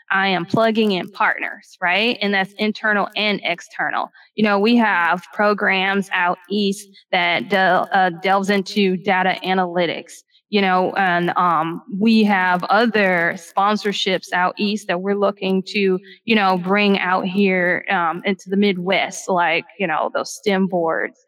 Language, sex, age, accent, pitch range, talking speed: English, female, 20-39, American, 185-215 Hz, 150 wpm